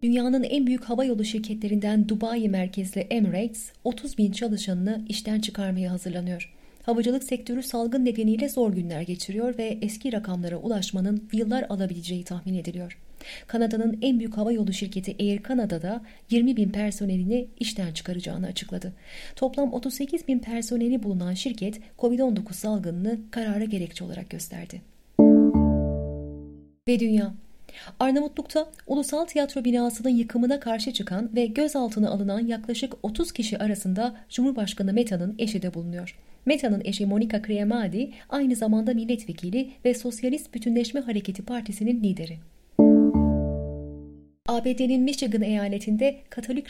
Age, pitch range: 30-49, 190-250 Hz